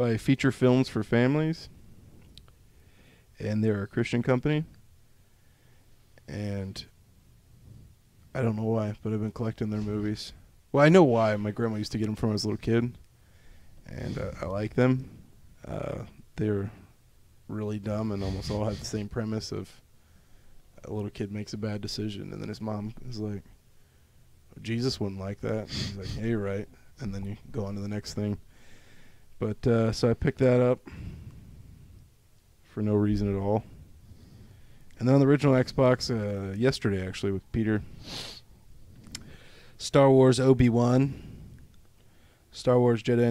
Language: English